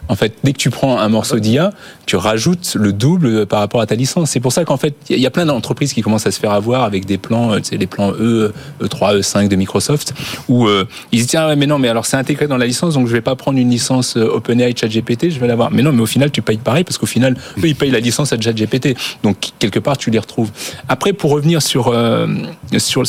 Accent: French